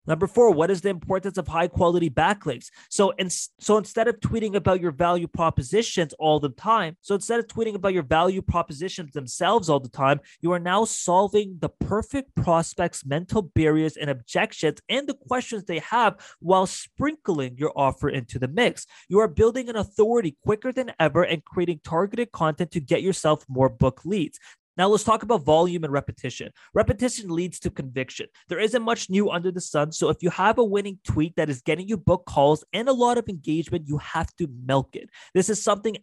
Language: English